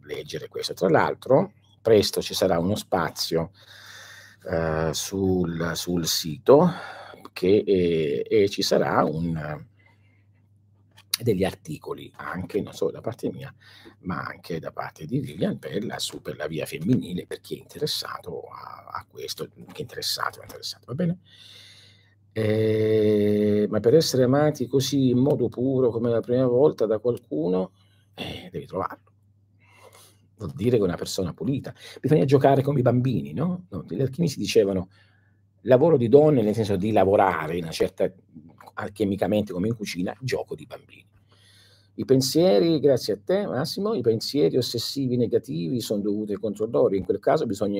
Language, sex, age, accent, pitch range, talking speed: Italian, male, 50-69, native, 100-140 Hz, 150 wpm